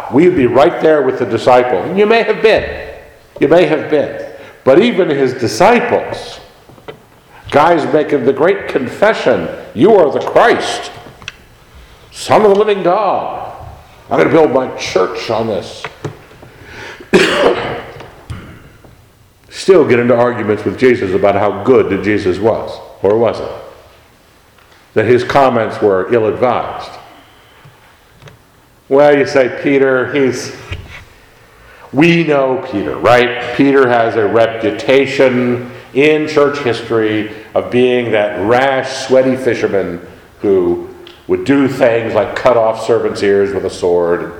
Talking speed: 130 wpm